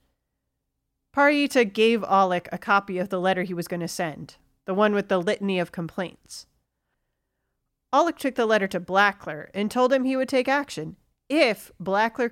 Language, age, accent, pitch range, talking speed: English, 40-59, American, 180-245 Hz, 170 wpm